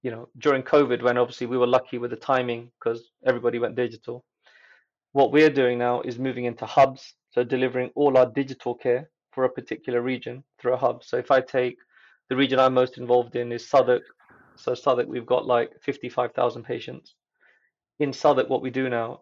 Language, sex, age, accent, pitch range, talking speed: English, male, 30-49, British, 125-140 Hz, 195 wpm